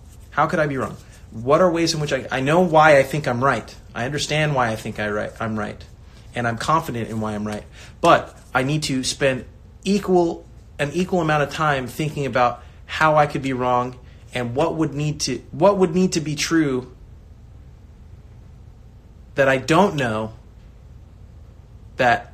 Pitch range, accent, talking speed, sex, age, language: 110-140 Hz, American, 185 wpm, male, 30-49, English